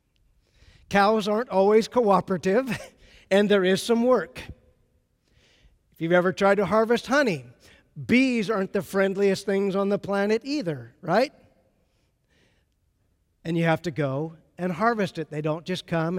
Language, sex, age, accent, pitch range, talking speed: English, male, 50-69, American, 170-220 Hz, 140 wpm